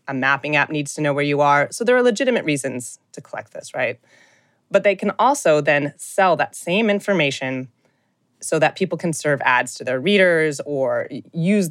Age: 20-39